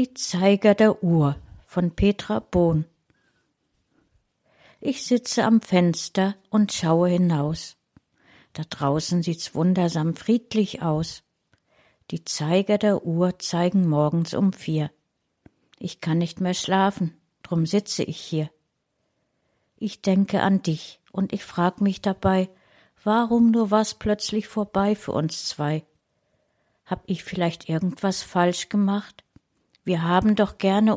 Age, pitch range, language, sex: 60-79, 170-210 Hz, German, female